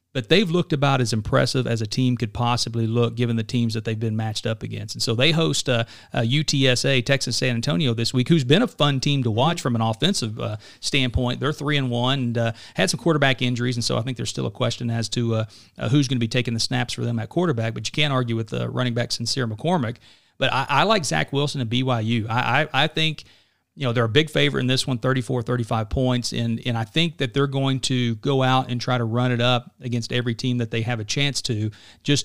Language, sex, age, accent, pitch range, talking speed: English, male, 40-59, American, 115-135 Hz, 260 wpm